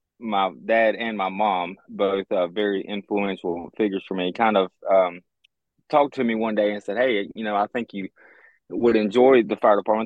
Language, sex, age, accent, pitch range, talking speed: English, male, 20-39, American, 95-120 Hz, 195 wpm